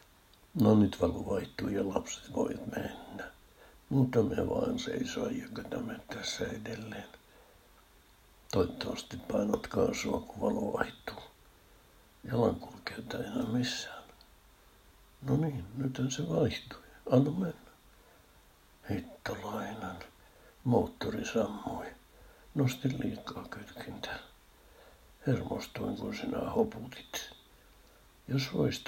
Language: Finnish